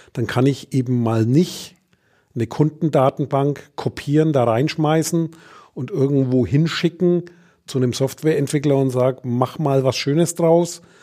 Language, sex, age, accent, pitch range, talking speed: German, male, 40-59, German, 125-155 Hz, 130 wpm